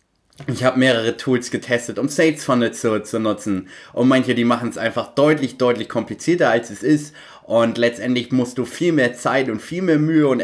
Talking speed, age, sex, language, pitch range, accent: 200 wpm, 30-49, male, German, 125-155 Hz, German